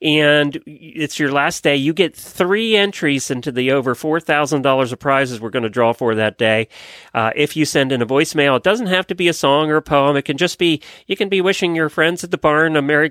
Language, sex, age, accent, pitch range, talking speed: English, male, 40-59, American, 120-165 Hz, 245 wpm